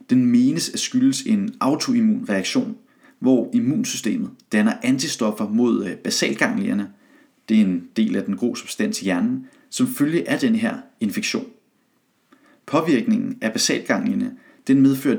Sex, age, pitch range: male, 30-49, 215-260 Hz